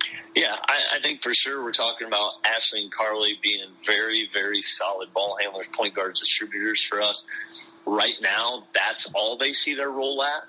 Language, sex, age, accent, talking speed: English, male, 30-49, American, 185 wpm